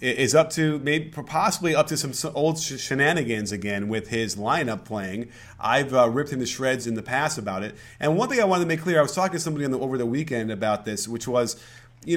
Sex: male